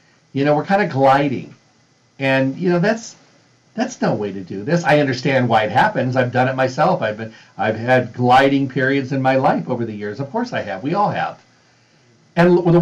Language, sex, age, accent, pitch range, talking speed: English, male, 50-69, American, 120-160 Hz, 215 wpm